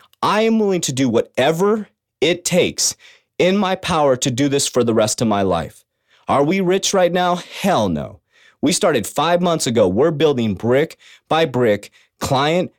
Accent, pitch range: American, 135-180 Hz